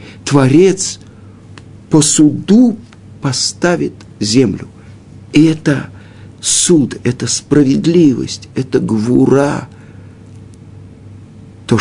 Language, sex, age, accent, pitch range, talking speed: Russian, male, 50-69, native, 105-140 Hz, 65 wpm